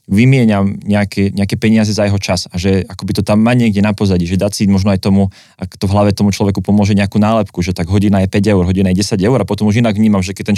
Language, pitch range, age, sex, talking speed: Slovak, 95-110 Hz, 20-39, male, 280 wpm